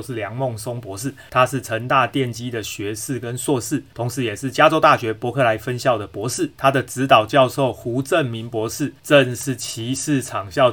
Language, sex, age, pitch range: Chinese, male, 30-49, 115-140 Hz